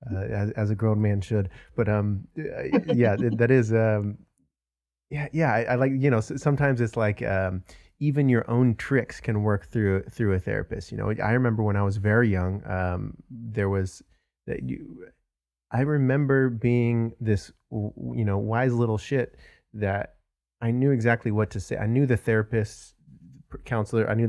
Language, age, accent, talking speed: English, 20-39, American, 175 wpm